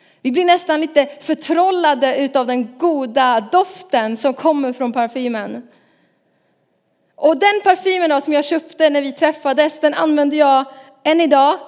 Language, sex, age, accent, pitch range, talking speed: Swedish, female, 30-49, native, 260-315 Hz, 145 wpm